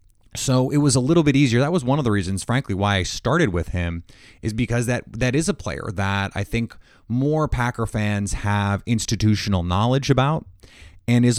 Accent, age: American, 30-49